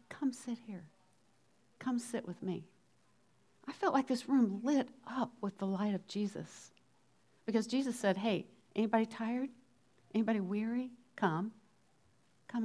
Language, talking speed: English, 140 wpm